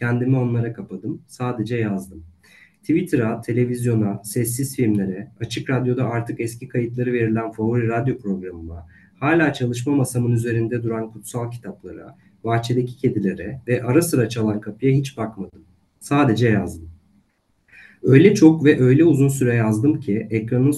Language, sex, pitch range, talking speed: Turkish, male, 105-130 Hz, 130 wpm